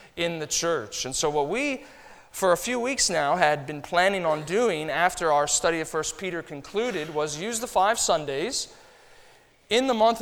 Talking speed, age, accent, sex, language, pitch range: 190 wpm, 40-59, American, male, English, 145-195 Hz